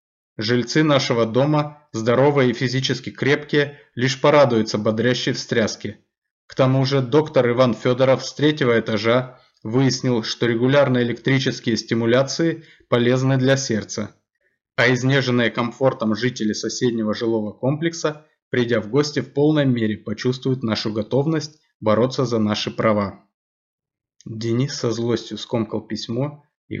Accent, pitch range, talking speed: native, 110-130 Hz, 120 wpm